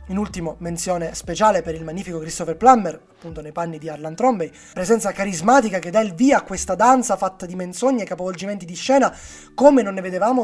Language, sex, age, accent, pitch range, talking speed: Italian, male, 20-39, native, 165-230 Hz, 200 wpm